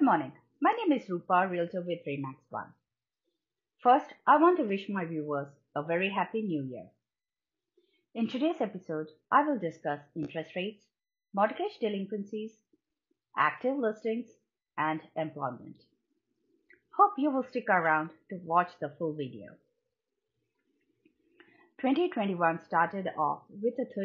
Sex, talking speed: female, 125 wpm